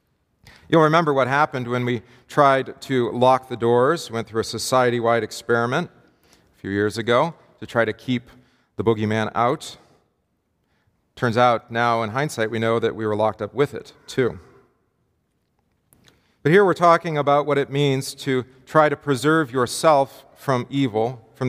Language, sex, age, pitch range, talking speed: English, male, 40-59, 115-145 Hz, 160 wpm